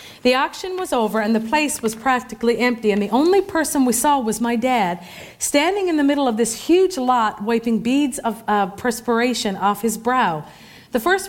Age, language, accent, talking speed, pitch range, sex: 40-59, English, American, 195 wpm, 225-290 Hz, female